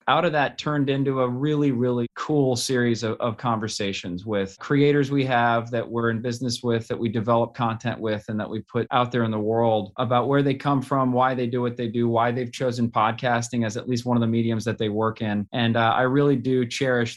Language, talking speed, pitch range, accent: English, 240 wpm, 110-130 Hz, American